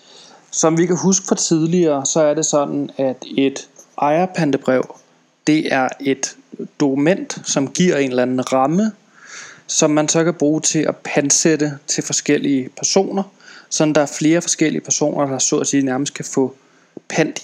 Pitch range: 135-160 Hz